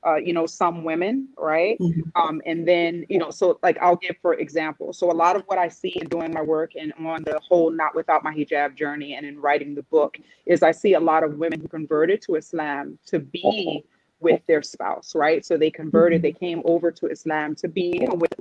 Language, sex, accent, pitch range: English, female, American, 155-180 Hz